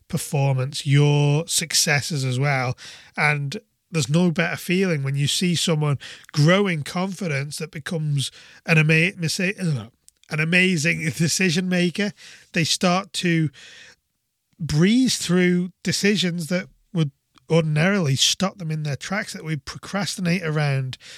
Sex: male